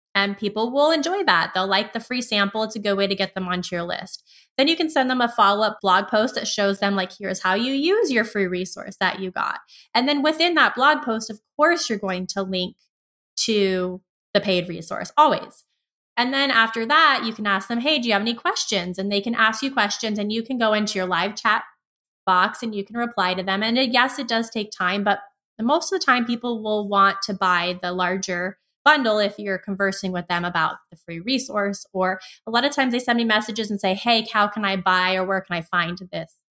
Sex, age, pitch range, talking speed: female, 20-39, 195-240 Hz, 240 wpm